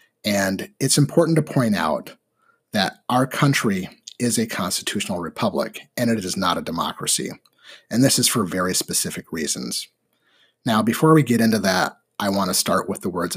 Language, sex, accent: English, male, American